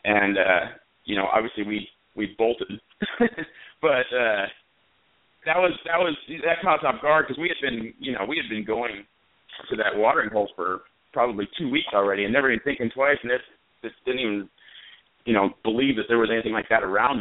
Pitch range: 100-125 Hz